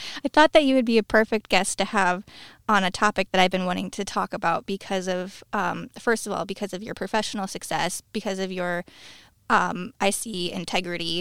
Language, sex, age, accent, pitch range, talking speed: English, female, 20-39, American, 185-220 Hz, 210 wpm